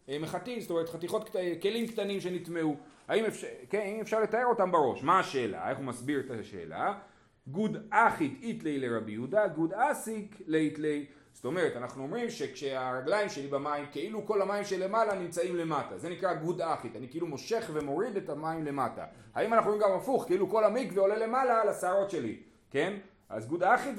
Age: 30-49